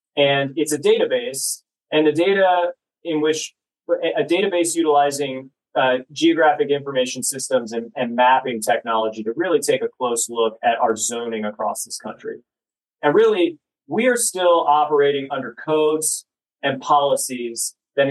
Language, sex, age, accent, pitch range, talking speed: English, male, 30-49, American, 130-155 Hz, 145 wpm